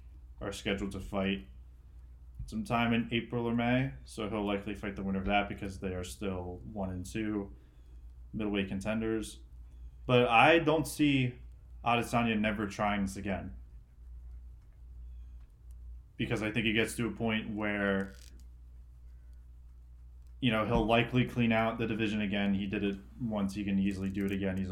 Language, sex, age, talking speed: English, male, 20-39, 155 wpm